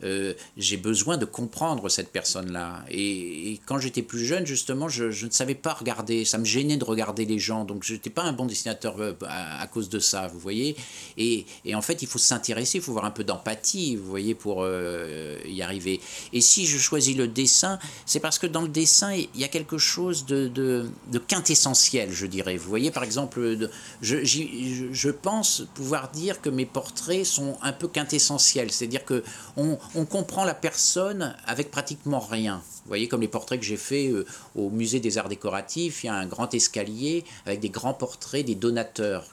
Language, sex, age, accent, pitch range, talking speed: French, male, 50-69, French, 110-145 Hz, 210 wpm